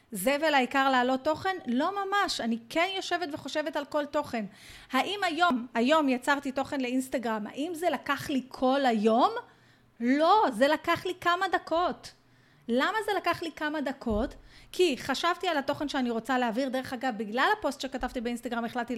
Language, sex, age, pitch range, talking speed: Hebrew, female, 30-49, 245-345 Hz, 160 wpm